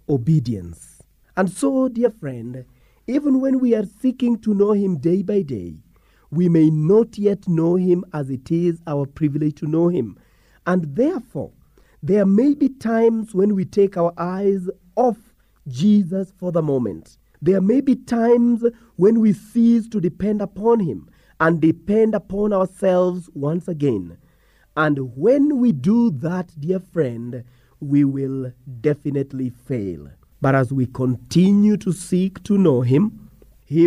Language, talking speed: English, 150 wpm